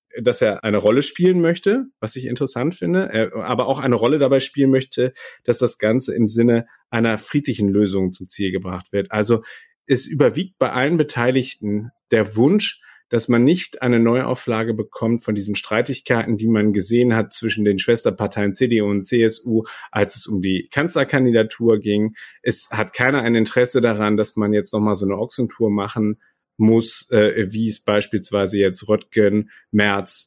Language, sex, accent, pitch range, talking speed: German, male, German, 105-130 Hz, 165 wpm